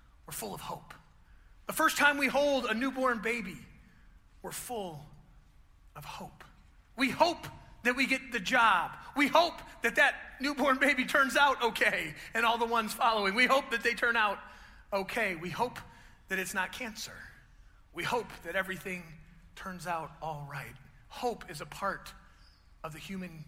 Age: 40-59